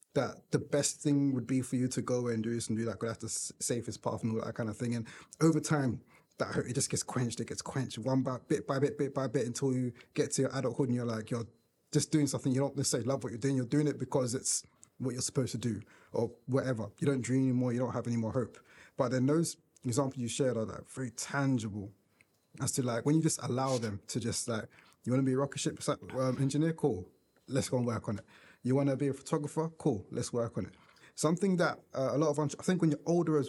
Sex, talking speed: male, 265 wpm